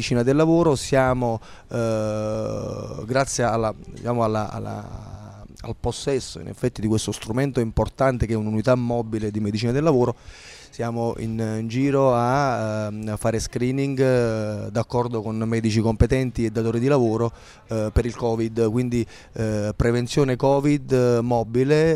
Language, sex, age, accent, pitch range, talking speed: Italian, male, 30-49, native, 115-130 Hz, 135 wpm